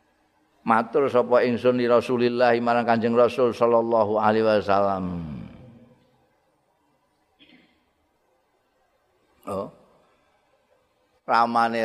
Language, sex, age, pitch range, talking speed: Indonesian, male, 50-69, 100-140 Hz, 60 wpm